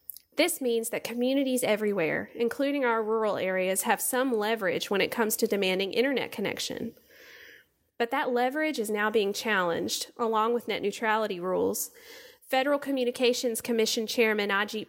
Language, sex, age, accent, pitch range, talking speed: English, female, 30-49, American, 210-255 Hz, 145 wpm